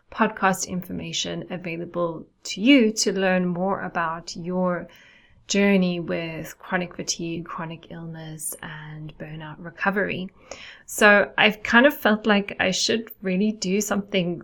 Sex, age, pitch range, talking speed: female, 20-39, 175-200 Hz, 125 wpm